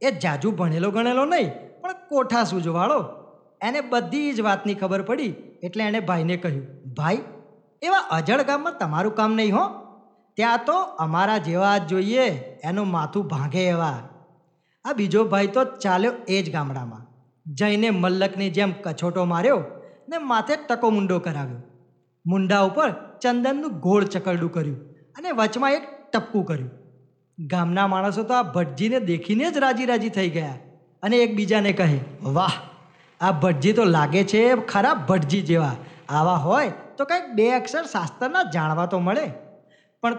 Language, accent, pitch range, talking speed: Gujarati, native, 170-230 Hz, 145 wpm